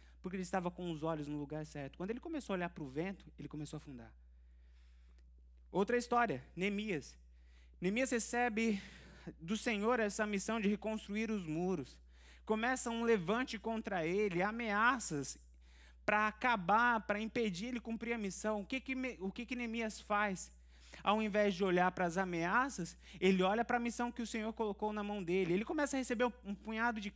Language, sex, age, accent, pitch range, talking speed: Portuguese, male, 20-39, Brazilian, 175-235 Hz, 180 wpm